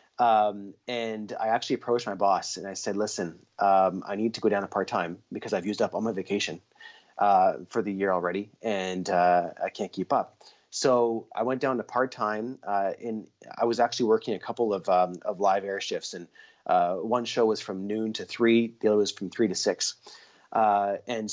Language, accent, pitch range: English, American, 100-120 Hz